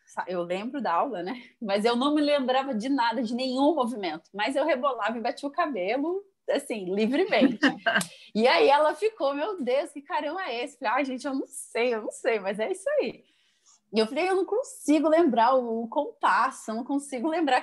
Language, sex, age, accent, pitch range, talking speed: Portuguese, female, 20-39, Brazilian, 220-300 Hz, 205 wpm